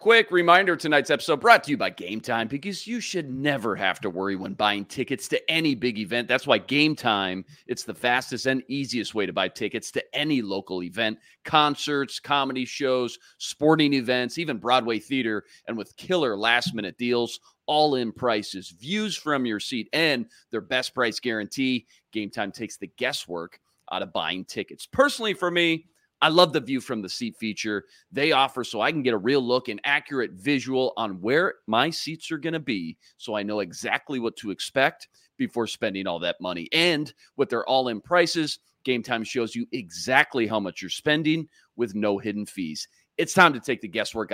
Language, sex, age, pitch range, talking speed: English, male, 30-49, 105-155 Hz, 190 wpm